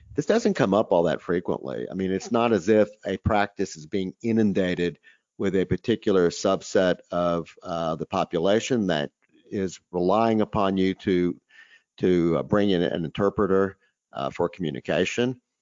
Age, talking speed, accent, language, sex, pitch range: 50-69, 160 wpm, American, English, male, 95-115 Hz